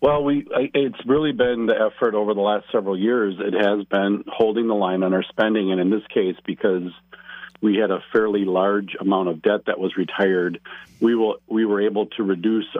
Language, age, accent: English, 50-69, American